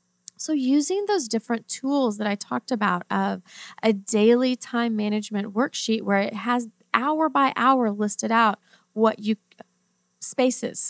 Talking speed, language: 145 wpm, English